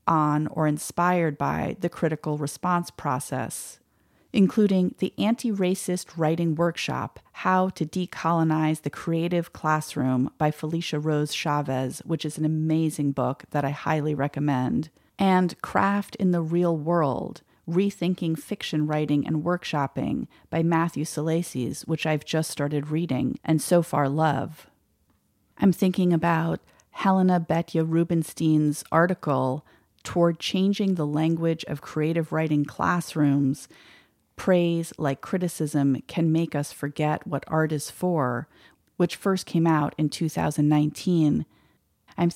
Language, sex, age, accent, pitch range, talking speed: English, female, 30-49, American, 150-175 Hz, 125 wpm